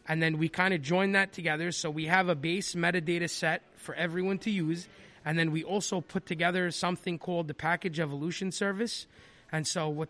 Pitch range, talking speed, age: 160-190 Hz, 200 wpm, 20-39